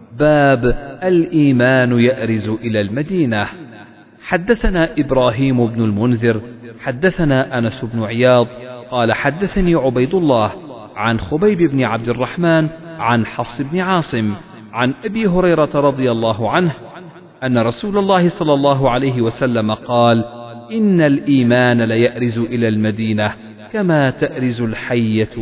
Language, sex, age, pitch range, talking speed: Arabic, male, 40-59, 115-160 Hz, 115 wpm